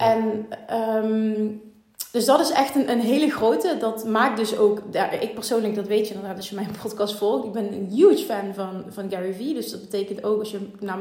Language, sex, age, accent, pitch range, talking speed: Dutch, female, 30-49, Dutch, 210-245 Hz, 230 wpm